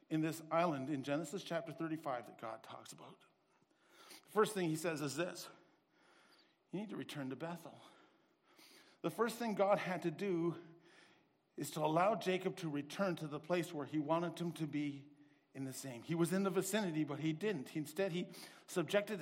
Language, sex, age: English, male, 50-69